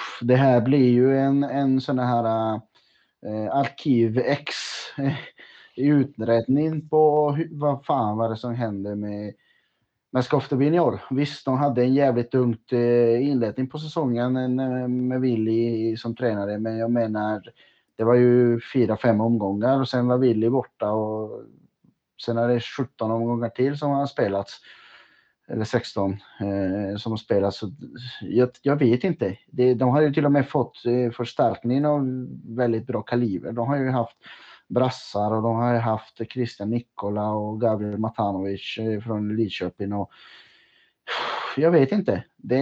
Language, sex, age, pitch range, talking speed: Swedish, male, 30-49, 110-130 Hz, 140 wpm